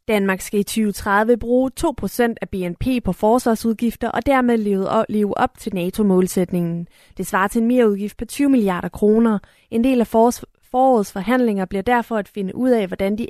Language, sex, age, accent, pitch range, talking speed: Danish, female, 30-49, native, 200-245 Hz, 170 wpm